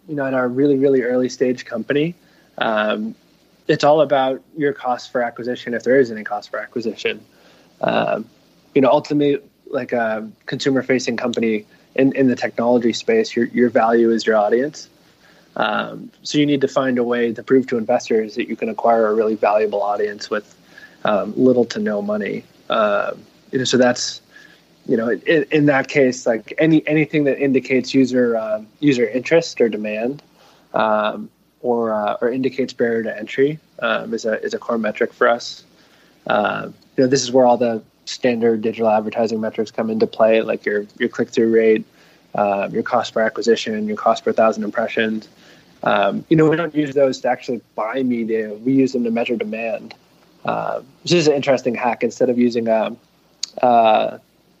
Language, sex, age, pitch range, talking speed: English, male, 20-39, 115-140 Hz, 185 wpm